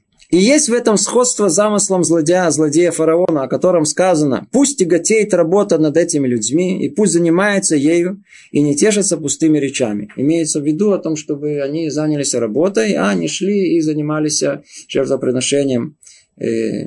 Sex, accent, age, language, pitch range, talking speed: male, native, 20-39, Russian, 145-210 Hz, 145 wpm